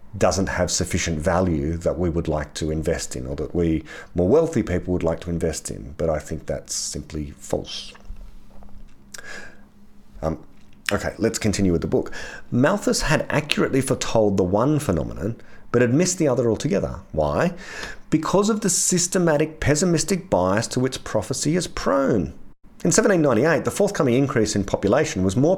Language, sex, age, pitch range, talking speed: English, male, 40-59, 85-130 Hz, 160 wpm